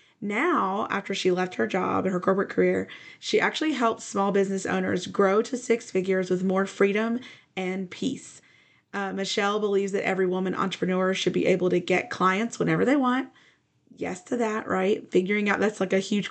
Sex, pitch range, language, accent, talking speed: female, 185-215 Hz, English, American, 190 wpm